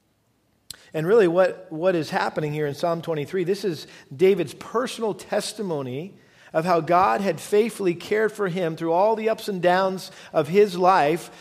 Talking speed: 170 wpm